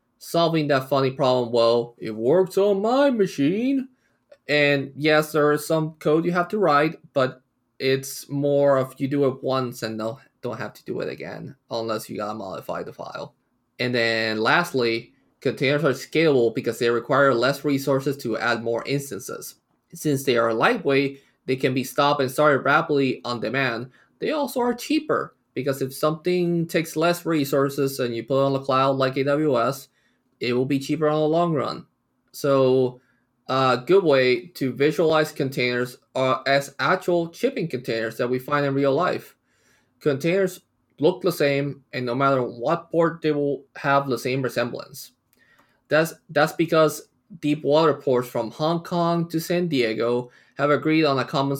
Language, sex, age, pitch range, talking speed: English, male, 20-39, 125-155 Hz, 170 wpm